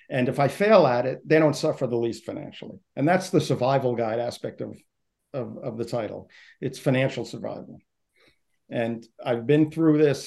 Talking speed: 175 wpm